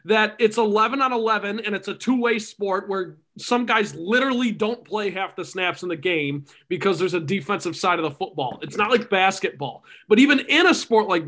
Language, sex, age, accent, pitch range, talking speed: English, male, 20-39, American, 185-240 Hz, 215 wpm